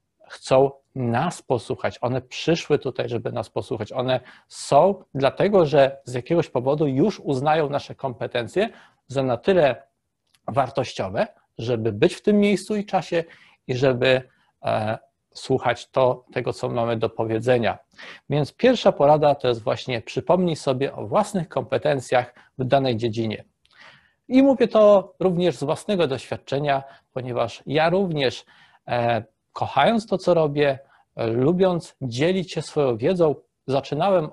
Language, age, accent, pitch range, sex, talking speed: Polish, 40-59, native, 125-165 Hz, male, 130 wpm